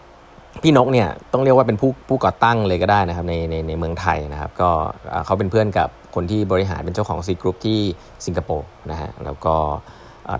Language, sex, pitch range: Thai, male, 85-110 Hz